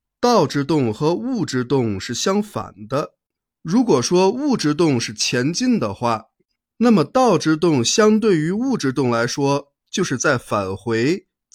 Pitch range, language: 120-205 Hz, Chinese